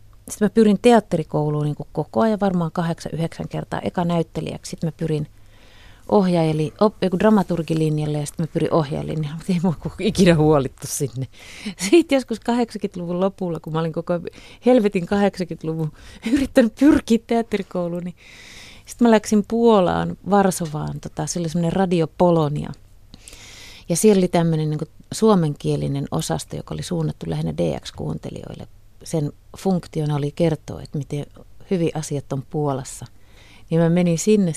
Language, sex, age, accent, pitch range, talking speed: Finnish, female, 30-49, native, 140-185 Hz, 140 wpm